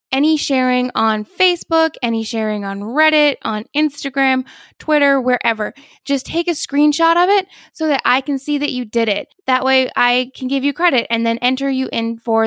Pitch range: 220-275 Hz